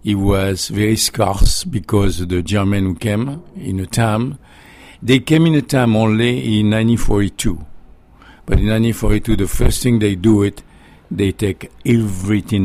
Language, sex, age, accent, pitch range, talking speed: English, male, 50-69, French, 90-110 Hz, 155 wpm